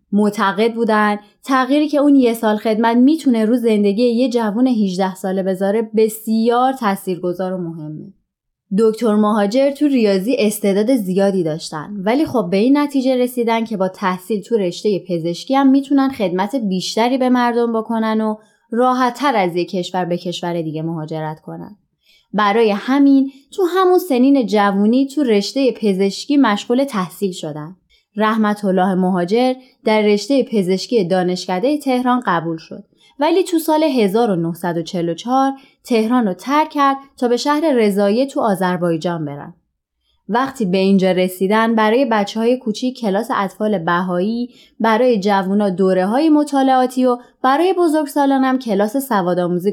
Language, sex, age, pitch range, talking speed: Persian, female, 20-39, 190-255 Hz, 140 wpm